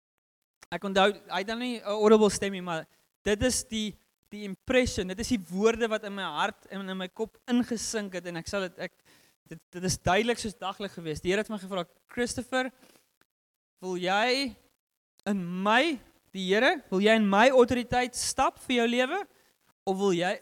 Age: 20-39